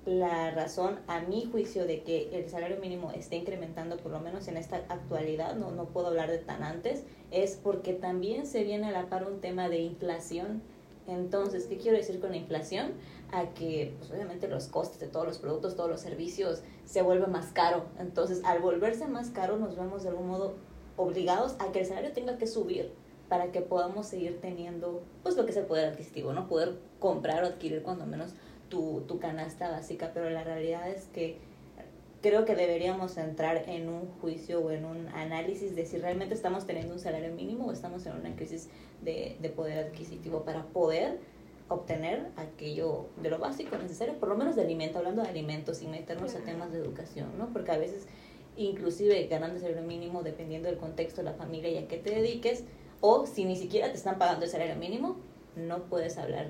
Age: 20-39